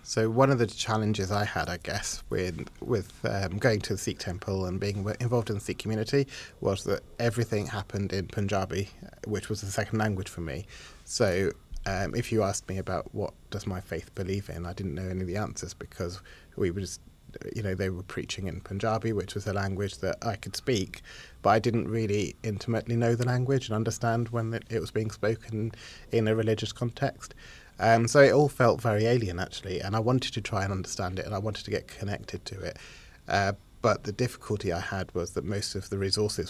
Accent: British